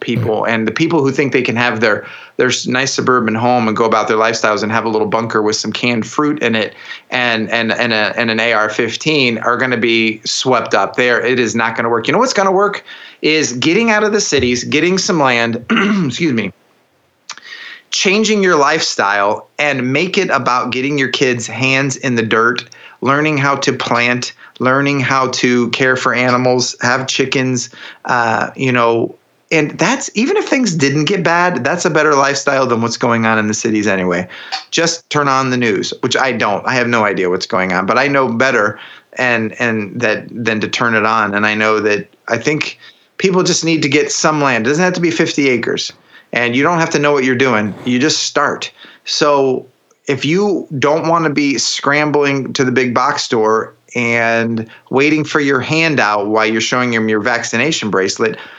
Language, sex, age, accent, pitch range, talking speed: English, male, 30-49, American, 115-150 Hz, 205 wpm